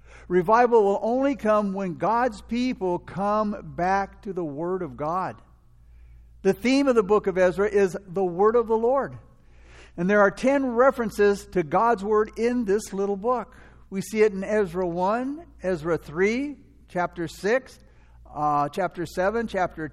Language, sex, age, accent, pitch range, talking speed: English, male, 60-79, American, 165-225 Hz, 160 wpm